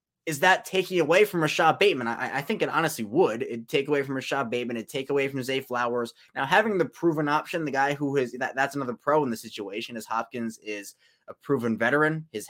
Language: English